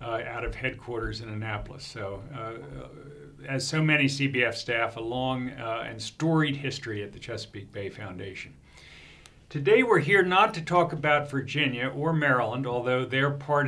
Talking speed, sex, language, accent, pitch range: 160 wpm, male, English, American, 115-150 Hz